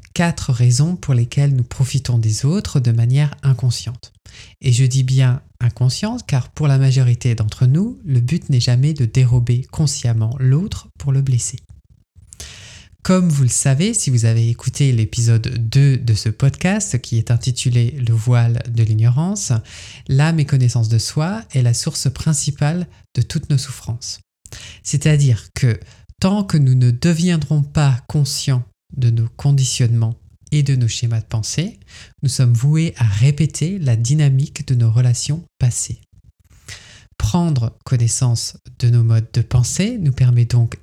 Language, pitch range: French, 115-140 Hz